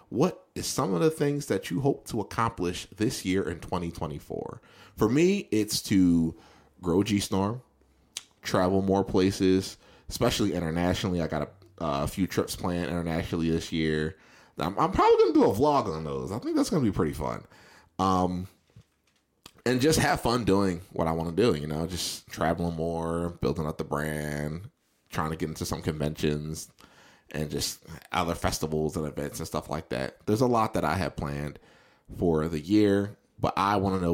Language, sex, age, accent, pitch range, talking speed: English, male, 20-39, American, 80-100 Hz, 185 wpm